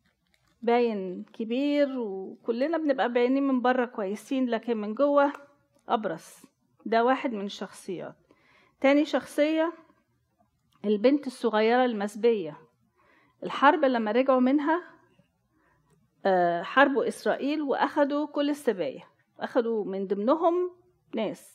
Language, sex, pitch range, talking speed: Arabic, female, 215-285 Hz, 95 wpm